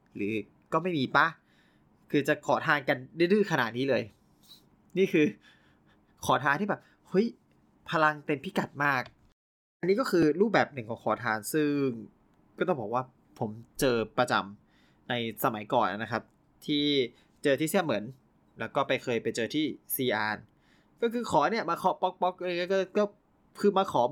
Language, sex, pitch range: Thai, male, 120-155 Hz